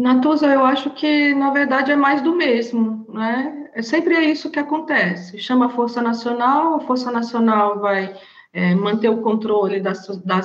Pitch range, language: 195-240 Hz, Portuguese